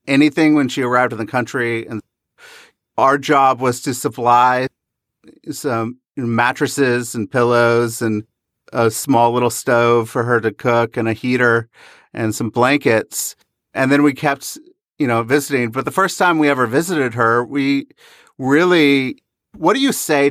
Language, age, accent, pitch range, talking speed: English, 40-59, American, 120-145 Hz, 155 wpm